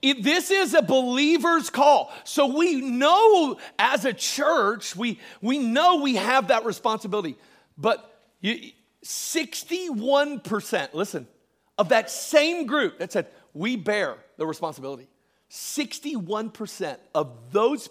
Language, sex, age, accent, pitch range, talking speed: English, male, 40-59, American, 210-280 Hz, 120 wpm